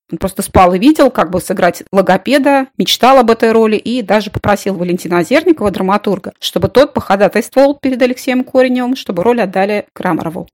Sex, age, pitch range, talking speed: female, 30-49, 185-235 Hz, 165 wpm